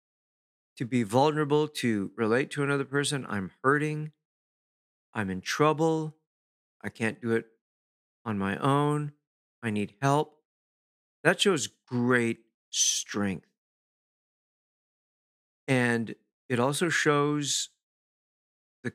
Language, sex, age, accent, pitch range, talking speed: English, male, 50-69, American, 110-145 Hz, 100 wpm